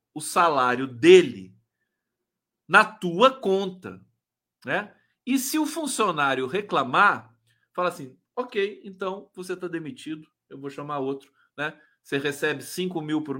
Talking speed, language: 130 wpm, Portuguese